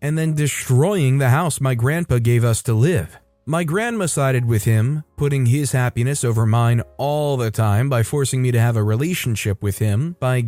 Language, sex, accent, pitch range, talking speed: English, male, American, 115-145 Hz, 195 wpm